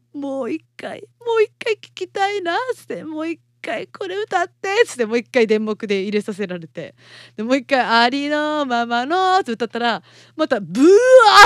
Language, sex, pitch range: Japanese, female, 195-320 Hz